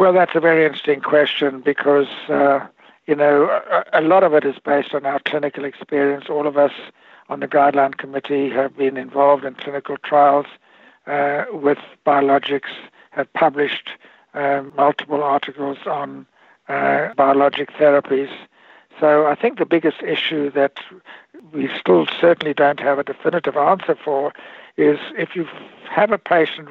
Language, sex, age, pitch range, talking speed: English, male, 60-79, 140-155 Hz, 150 wpm